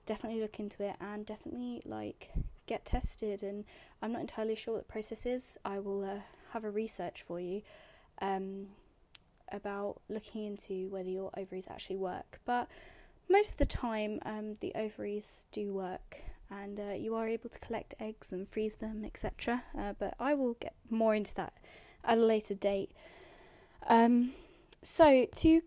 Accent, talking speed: British, 165 wpm